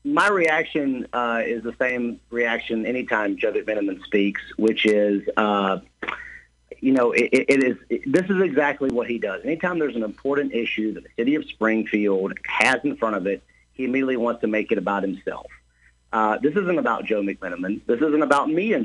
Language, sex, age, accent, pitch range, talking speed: English, male, 50-69, American, 110-140 Hz, 190 wpm